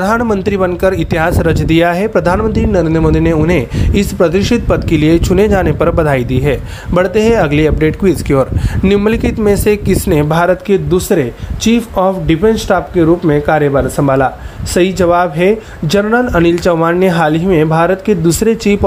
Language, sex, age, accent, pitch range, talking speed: Marathi, male, 30-49, native, 155-195 Hz, 190 wpm